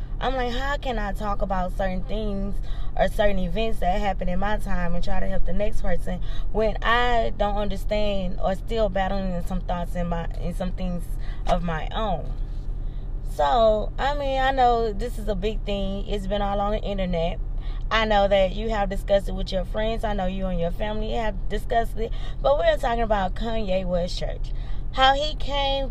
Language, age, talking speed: English, 20-39, 200 wpm